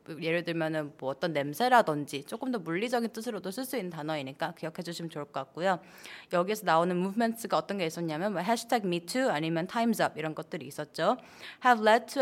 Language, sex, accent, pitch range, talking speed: English, female, Korean, 160-235 Hz, 170 wpm